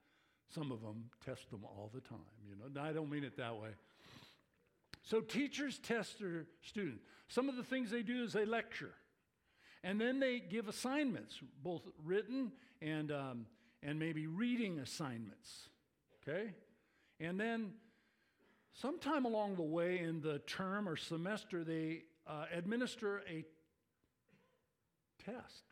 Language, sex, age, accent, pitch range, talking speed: English, male, 50-69, American, 140-225 Hz, 140 wpm